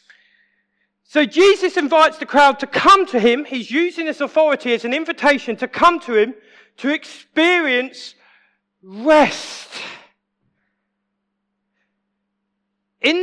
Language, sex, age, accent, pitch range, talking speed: English, male, 40-59, British, 205-315 Hz, 110 wpm